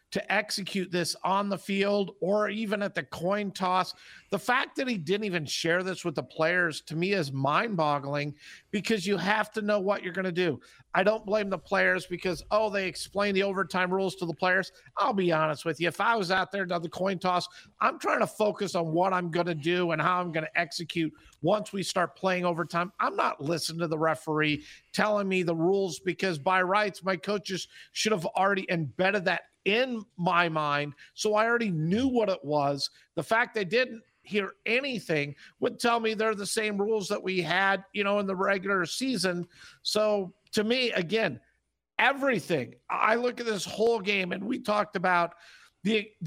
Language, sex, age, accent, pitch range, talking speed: English, male, 50-69, American, 170-210 Hz, 200 wpm